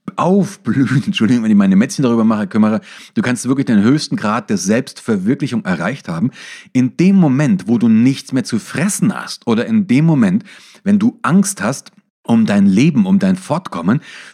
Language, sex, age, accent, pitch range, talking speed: German, male, 40-59, German, 145-210 Hz, 180 wpm